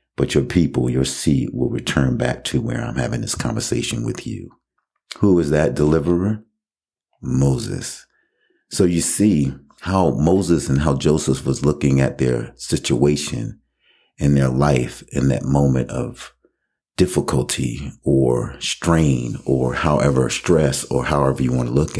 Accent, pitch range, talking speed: American, 65-80 Hz, 145 wpm